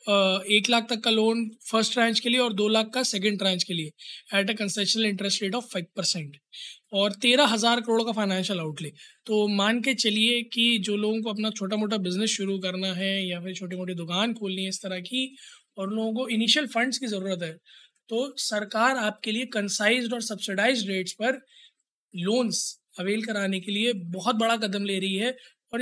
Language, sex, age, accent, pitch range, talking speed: Hindi, male, 20-39, native, 190-230 Hz, 200 wpm